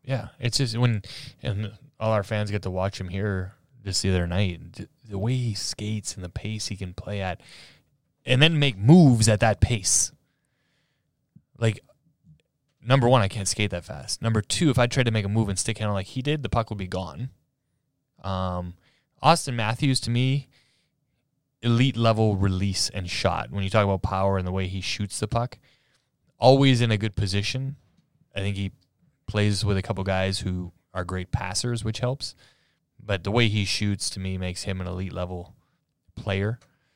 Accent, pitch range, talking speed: American, 95-125 Hz, 185 wpm